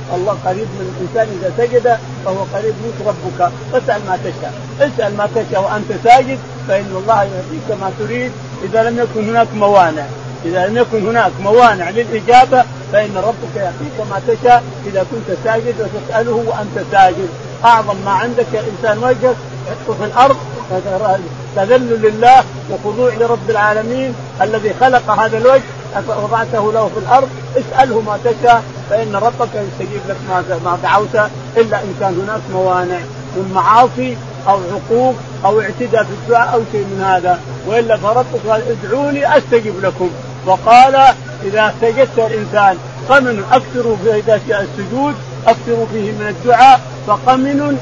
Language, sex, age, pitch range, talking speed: Arabic, male, 50-69, 180-240 Hz, 140 wpm